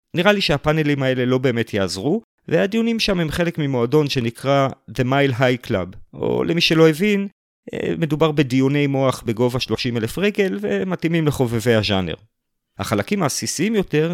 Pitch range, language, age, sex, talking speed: 105-155 Hz, Hebrew, 40-59, male, 140 wpm